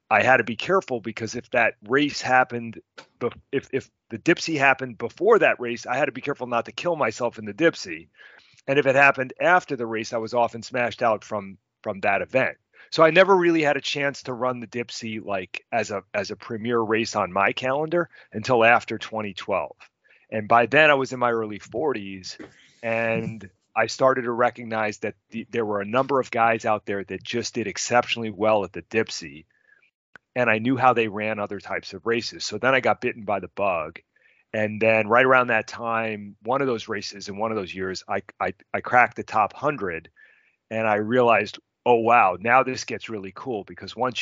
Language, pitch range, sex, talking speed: English, 110-130 Hz, male, 210 wpm